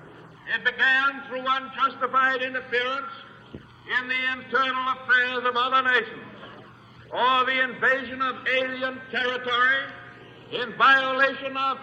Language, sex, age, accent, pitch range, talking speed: English, male, 60-79, American, 245-265 Hz, 105 wpm